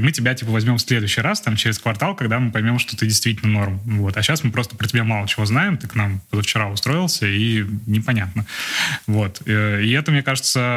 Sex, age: male, 20-39